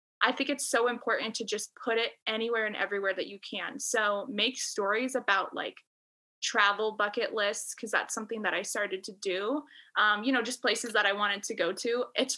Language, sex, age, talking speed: English, female, 20-39, 210 wpm